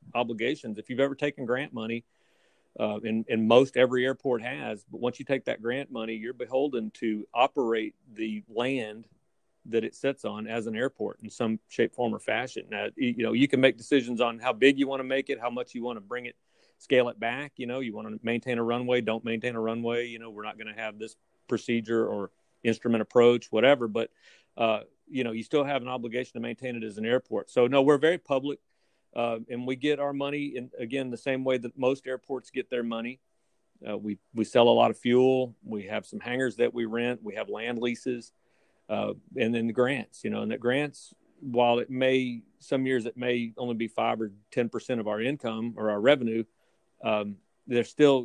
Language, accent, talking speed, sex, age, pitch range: English, American, 220 wpm, male, 40-59, 115-130 Hz